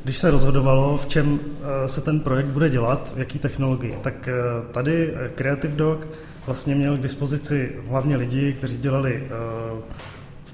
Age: 20-39